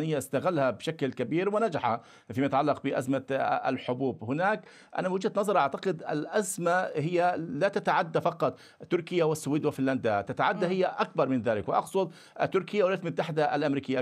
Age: 50-69